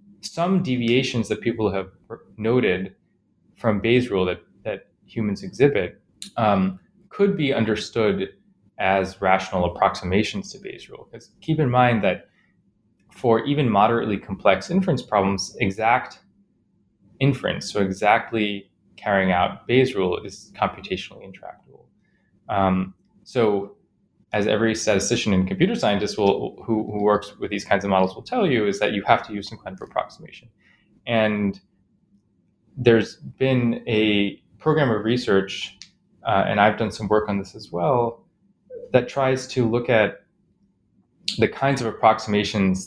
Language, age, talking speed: English, 20-39, 140 wpm